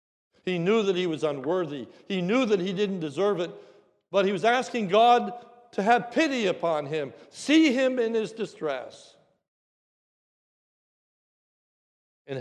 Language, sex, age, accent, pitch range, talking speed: English, male, 60-79, American, 195-270 Hz, 140 wpm